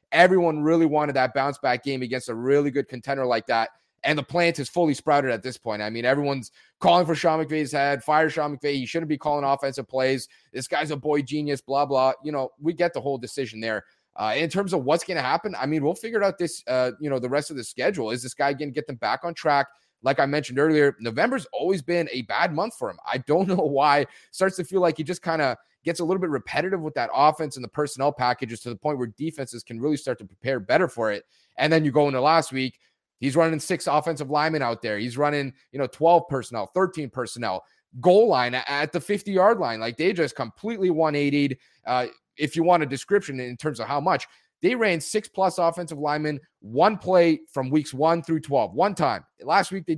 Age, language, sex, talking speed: 30-49, English, male, 240 wpm